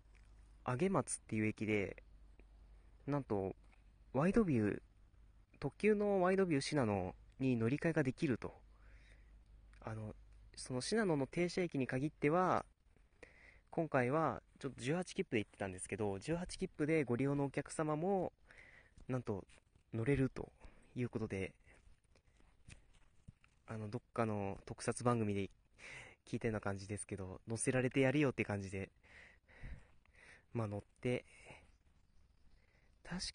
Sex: male